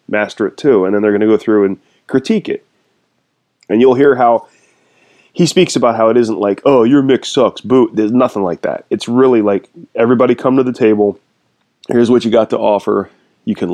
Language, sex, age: English, male, 20-39